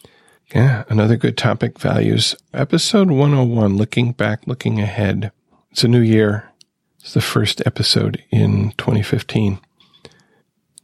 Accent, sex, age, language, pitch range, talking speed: American, male, 40-59, English, 105-130 Hz, 120 wpm